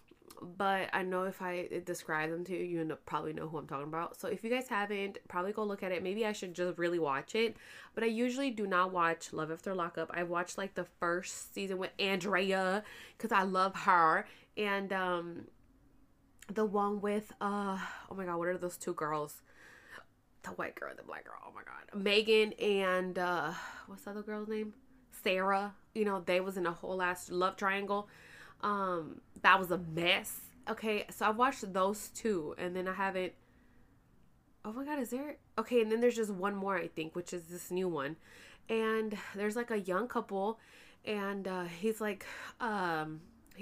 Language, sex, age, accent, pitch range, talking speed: English, female, 20-39, American, 175-210 Hz, 195 wpm